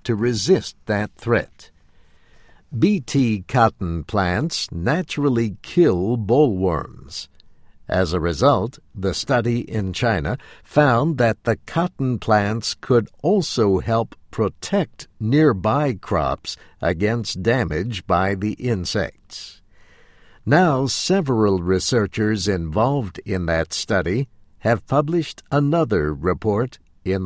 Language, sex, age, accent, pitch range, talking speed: English, male, 60-79, American, 90-125 Hz, 100 wpm